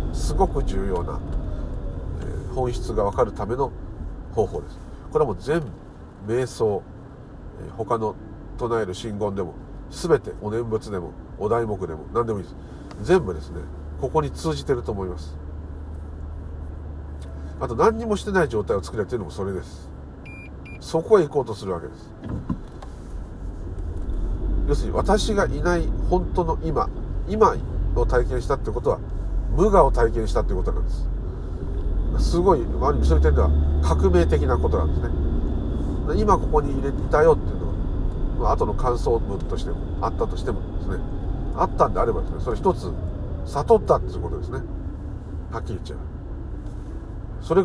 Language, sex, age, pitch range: Japanese, male, 50-69, 75-105 Hz